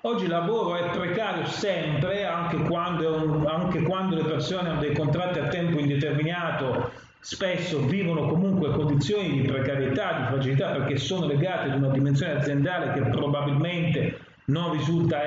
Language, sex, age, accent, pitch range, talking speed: Italian, male, 30-49, native, 135-160 Hz, 140 wpm